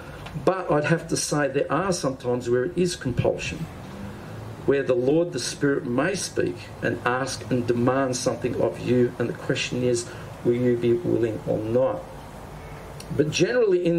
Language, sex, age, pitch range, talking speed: English, male, 50-69, 125-170 Hz, 170 wpm